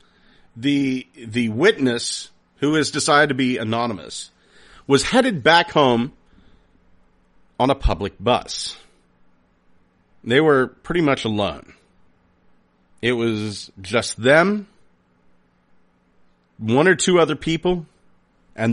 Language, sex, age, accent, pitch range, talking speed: English, male, 40-59, American, 90-145 Hz, 105 wpm